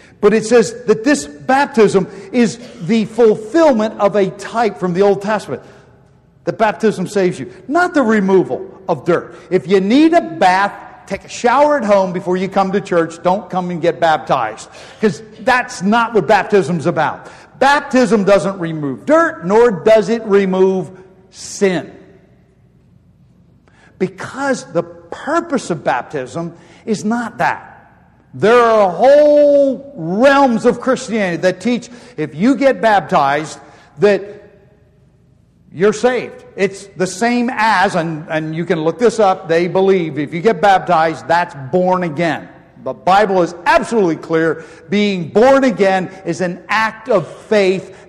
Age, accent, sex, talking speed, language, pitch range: 50-69, American, male, 145 wpm, English, 175-220 Hz